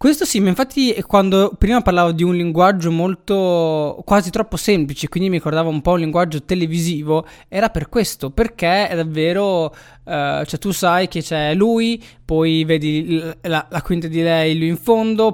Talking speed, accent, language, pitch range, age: 175 wpm, native, Italian, 145-195 Hz, 20-39